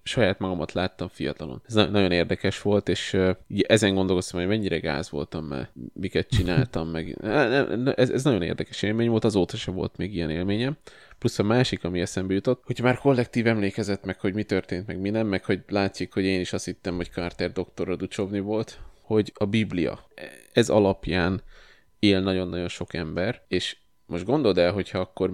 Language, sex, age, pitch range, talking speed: Hungarian, male, 20-39, 90-105 Hz, 180 wpm